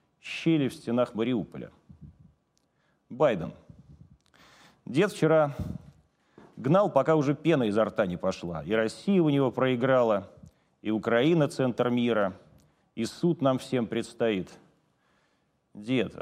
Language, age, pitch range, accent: Russian, 40-59, 115-155 Hz, native